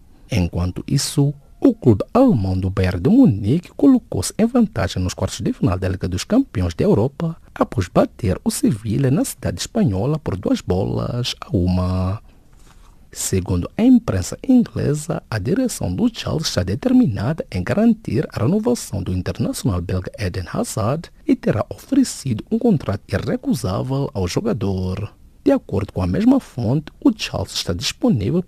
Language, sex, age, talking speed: English, male, 50-69, 150 wpm